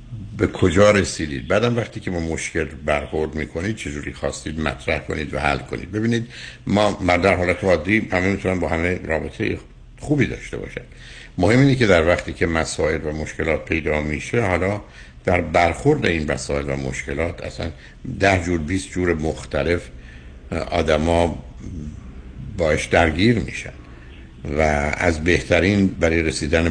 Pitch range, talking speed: 75-95 Hz, 145 wpm